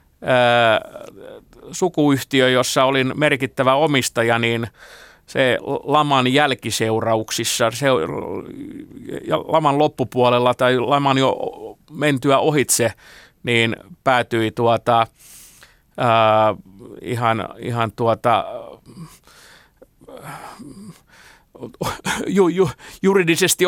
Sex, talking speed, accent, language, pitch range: male, 60 wpm, native, Finnish, 115-140 Hz